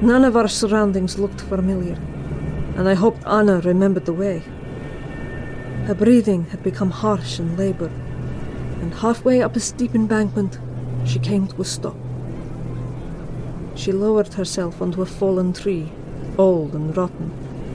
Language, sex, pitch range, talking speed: English, female, 130-205 Hz, 140 wpm